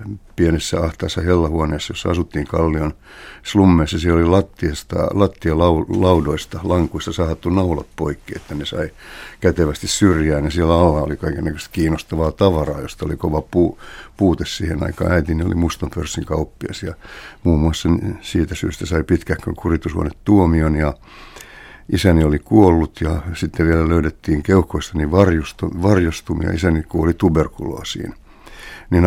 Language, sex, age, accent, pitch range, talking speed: Finnish, male, 60-79, native, 80-90 Hz, 125 wpm